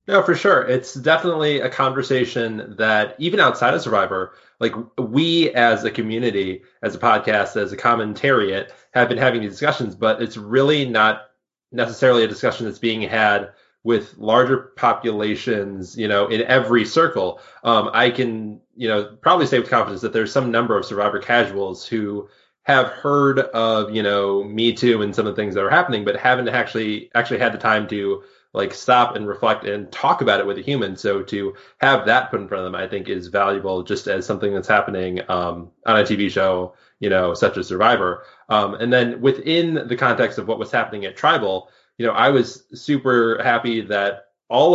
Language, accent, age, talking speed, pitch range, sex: English, American, 20-39, 195 wpm, 100-120 Hz, male